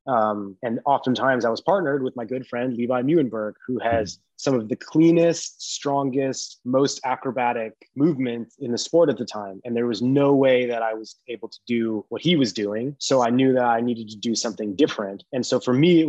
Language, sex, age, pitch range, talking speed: English, male, 20-39, 115-135 Hz, 215 wpm